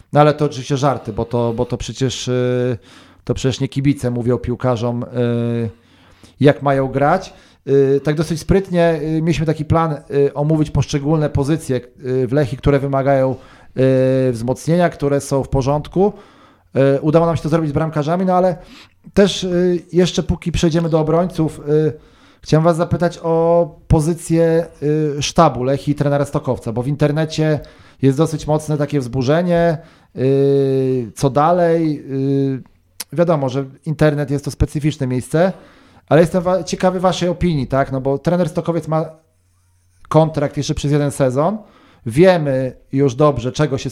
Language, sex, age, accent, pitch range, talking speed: Polish, male, 40-59, native, 130-160 Hz, 135 wpm